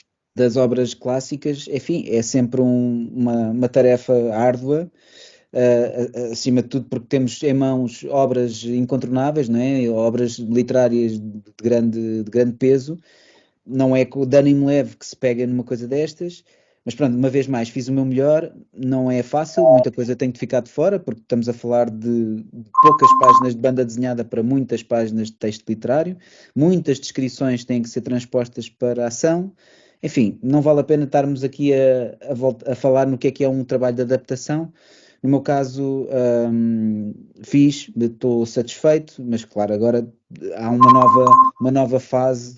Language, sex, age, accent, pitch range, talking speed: Portuguese, male, 20-39, Portuguese, 120-135 Hz, 175 wpm